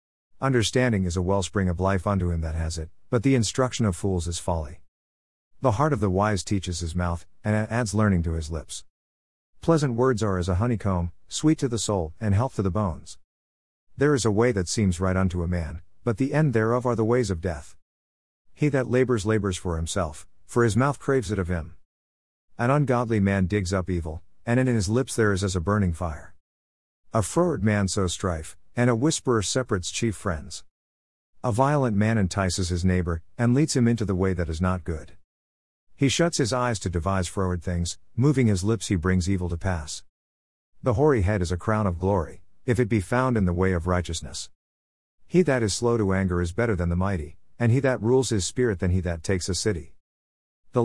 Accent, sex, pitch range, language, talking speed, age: American, male, 85-115 Hz, English, 210 wpm, 50-69